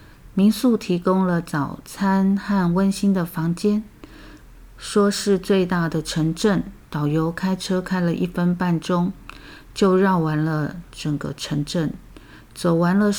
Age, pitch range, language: 50-69, 160-195 Hz, Chinese